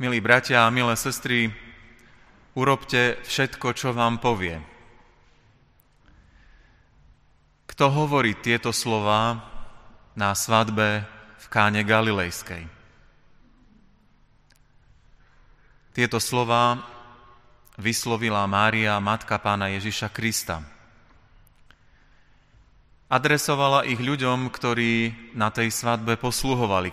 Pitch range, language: 105-125 Hz, Slovak